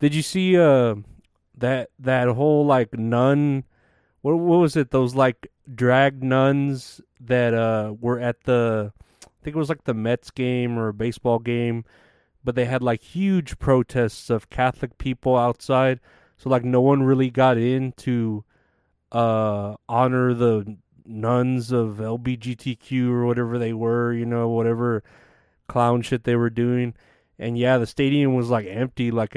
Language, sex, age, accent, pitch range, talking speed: English, male, 30-49, American, 115-130 Hz, 170 wpm